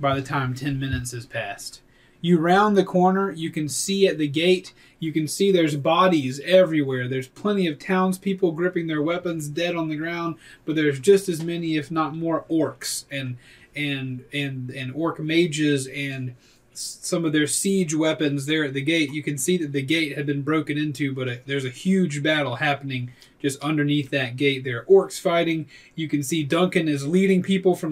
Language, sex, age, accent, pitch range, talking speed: English, male, 30-49, American, 140-175 Hz, 200 wpm